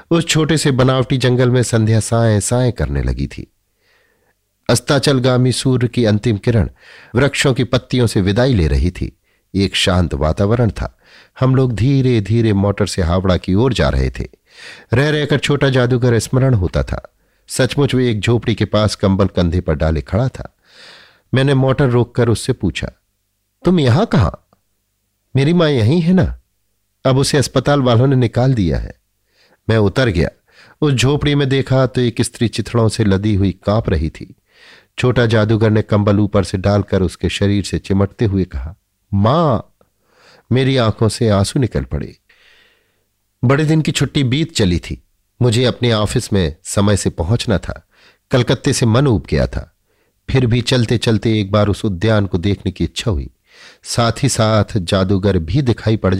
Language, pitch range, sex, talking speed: Hindi, 100-130 Hz, male, 170 wpm